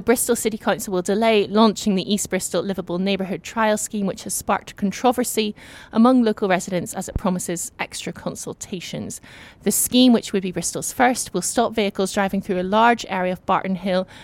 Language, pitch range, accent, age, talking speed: English, 180-205 Hz, British, 20-39, 180 wpm